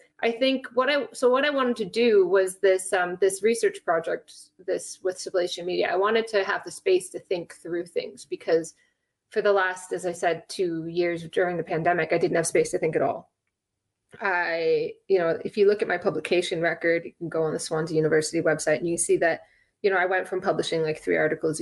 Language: English